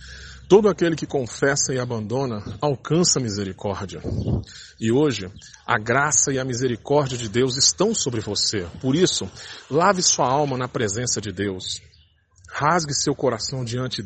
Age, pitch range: 40-59, 115-145 Hz